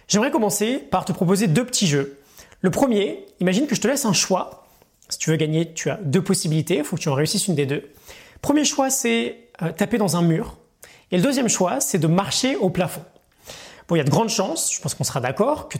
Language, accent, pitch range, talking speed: French, French, 150-210 Hz, 240 wpm